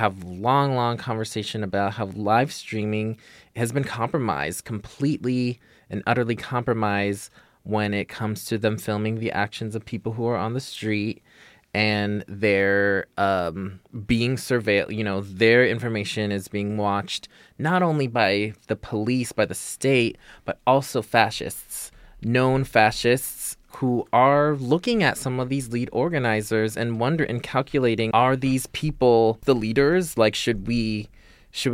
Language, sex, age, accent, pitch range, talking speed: English, male, 20-39, American, 105-125 Hz, 145 wpm